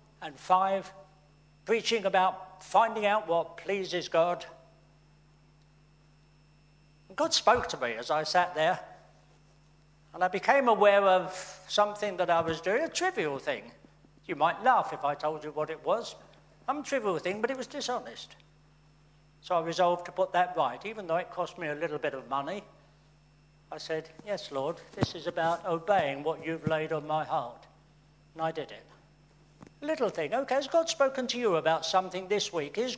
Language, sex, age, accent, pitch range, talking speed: English, male, 60-79, British, 155-210 Hz, 175 wpm